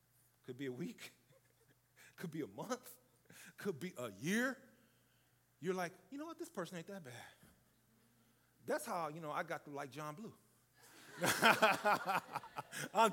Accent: American